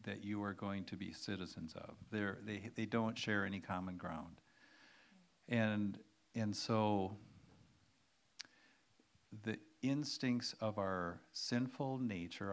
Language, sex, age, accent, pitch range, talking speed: English, male, 50-69, American, 100-120 Hz, 115 wpm